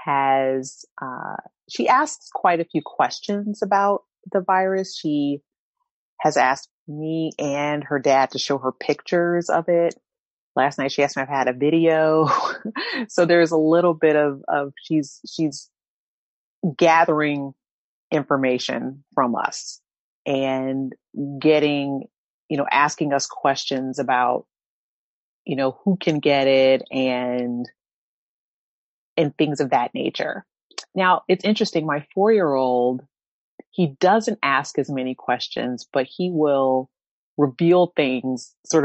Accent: American